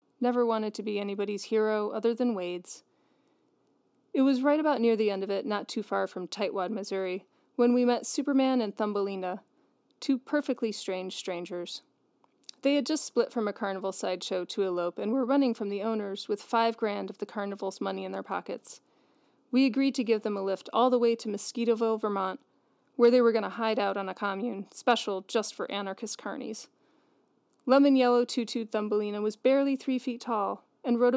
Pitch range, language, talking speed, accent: 200-245 Hz, English, 190 wpm, American